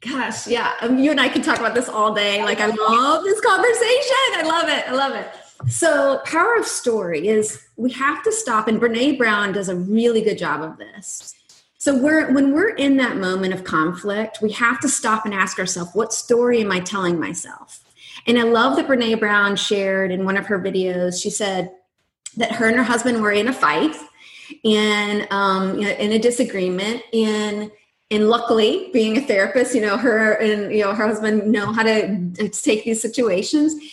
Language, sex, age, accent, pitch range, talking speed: English, female, 30-49, American, 215-295 Hz, 200 wpm